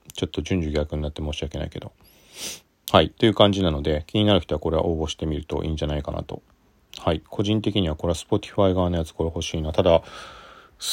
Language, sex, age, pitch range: Japanese, male, 40-59, 80-105 Hz